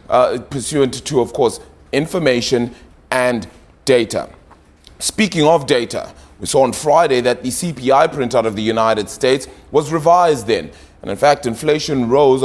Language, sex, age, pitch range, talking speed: English, male, 30-49, 110-145 Hz, 150 wpm